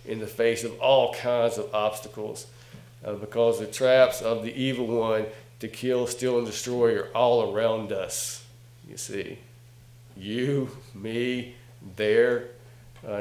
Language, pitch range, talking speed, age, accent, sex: English, 115-125 Hz, 140 wpm, 50-69, American, male